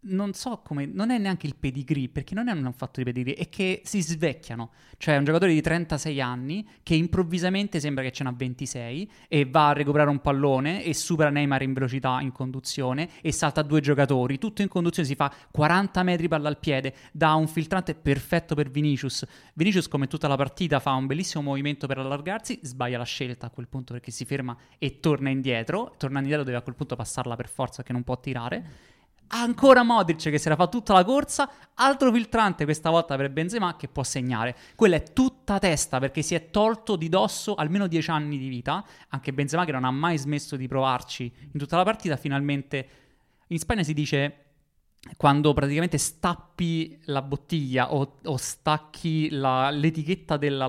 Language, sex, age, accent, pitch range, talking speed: Italian, male, 20-39, native, 135-175 Hz, 195 wpm